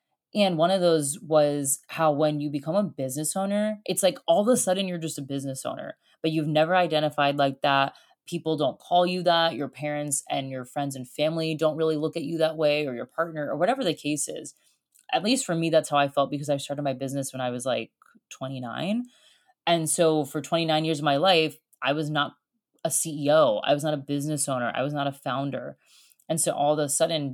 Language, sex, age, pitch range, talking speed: English, female, 20-39, 145-170 Hz, 230 wpm